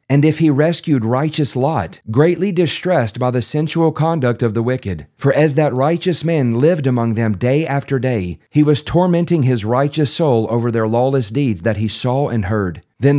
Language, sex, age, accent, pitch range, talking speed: English, male, 40-59, American, 110-145 Hz, 190 wpm